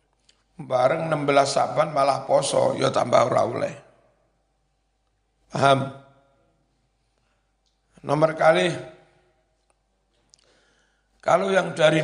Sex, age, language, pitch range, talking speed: male, 60-79, Indonesian, 130-155 Hz, 70 wpm